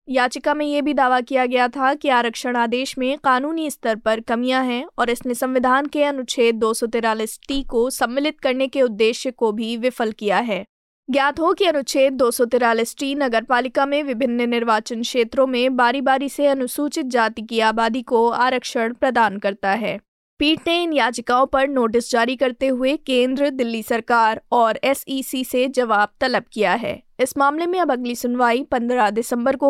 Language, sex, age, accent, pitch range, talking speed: Hindi, female, 20-39, native, 235-275 Hz, 175 wpm